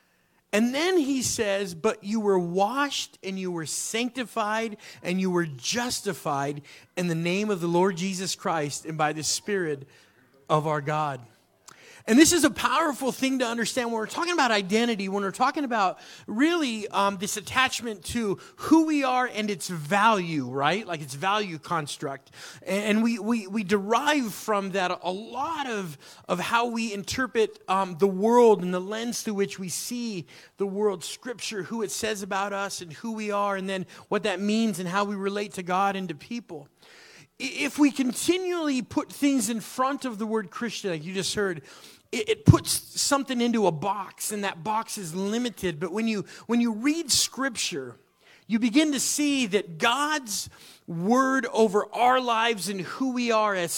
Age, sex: 30-49, male